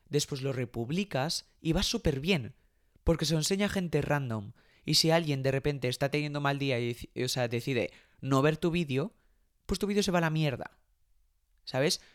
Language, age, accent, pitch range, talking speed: Spanish, 20-39, Spanish, 115-155 Hz, 190 wpm